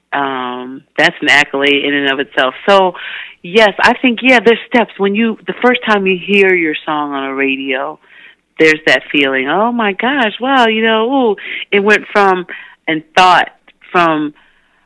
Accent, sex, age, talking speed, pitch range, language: American, female, 40-59, 175 wpm, 145-185 Hz, English